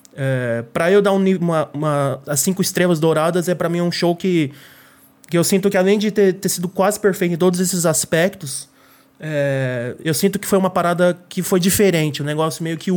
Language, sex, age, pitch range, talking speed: Portuguese, male, 20-39, 145-185 Hz, 215 wpm